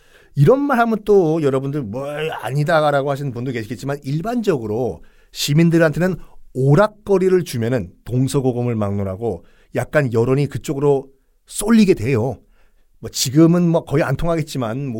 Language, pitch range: Korean, 130-190 Hz